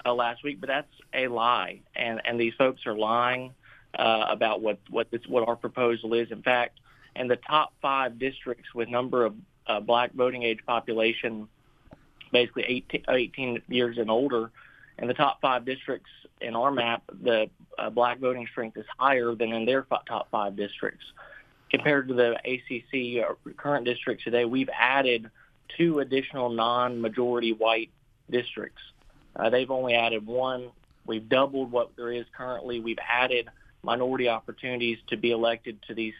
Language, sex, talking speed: English, male, 165 wpm